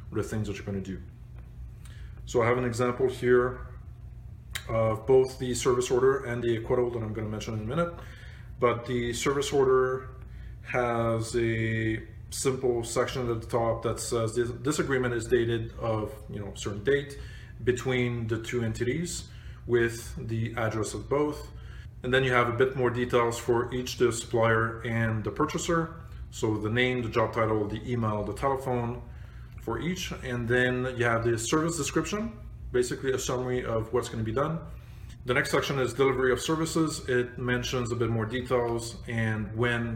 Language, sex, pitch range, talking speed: English, male, 110-130 Hz, 175 wpm